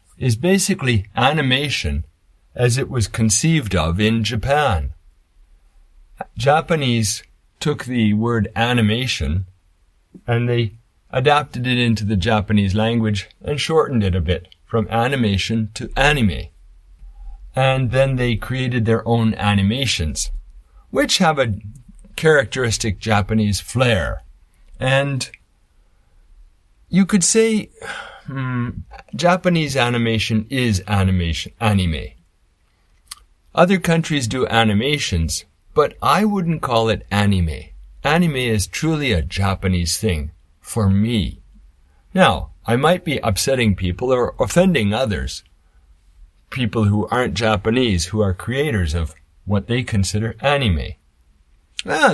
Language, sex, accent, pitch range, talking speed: English, male, American, 85-125 Hz, 110 wpm